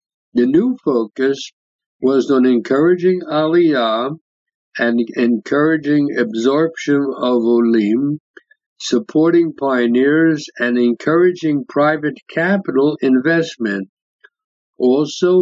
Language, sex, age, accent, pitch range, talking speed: English, male, 60-79, American, 120-160 Hz, 80 wpm